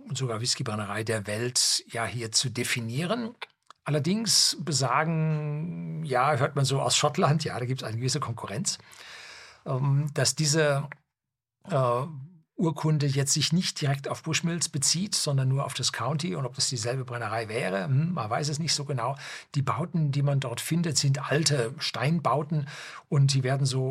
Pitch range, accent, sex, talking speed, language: 125-155 Hz, German, male, 160 wpm, German